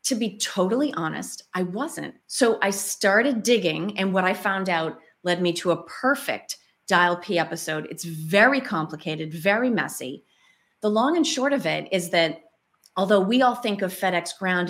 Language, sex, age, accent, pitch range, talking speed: English, female, 30-49, American, 170-225 Hz, 175 wpm